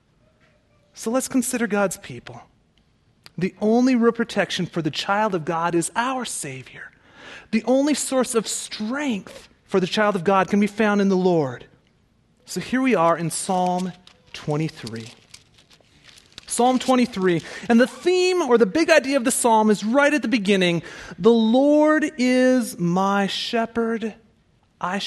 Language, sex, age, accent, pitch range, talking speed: English, male, 30-49, American, 185-255 Hz, 150 wpm